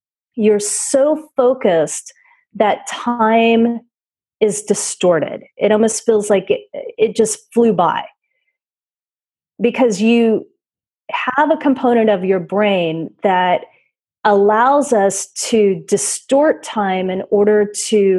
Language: English